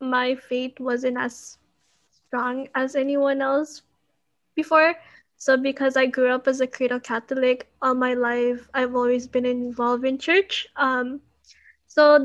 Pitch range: 245-280 Hz